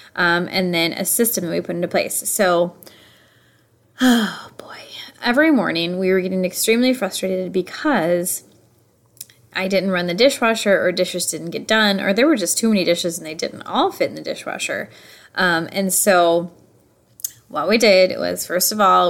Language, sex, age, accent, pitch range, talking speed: English, female, 20-39, American, 175-225 Hz, 175 wpm